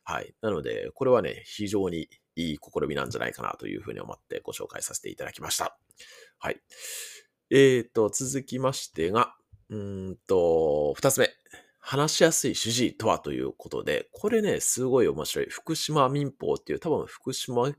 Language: Japanese